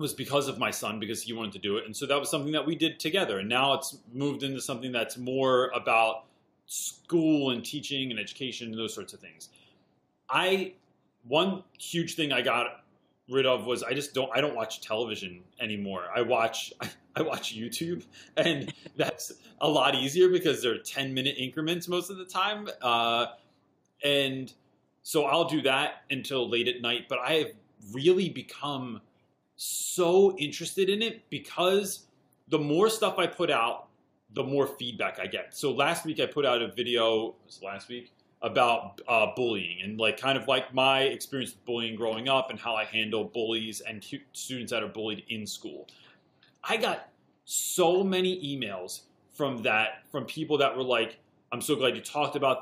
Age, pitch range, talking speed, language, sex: 30-49, 115-150 Hz, 185 wpm, English, male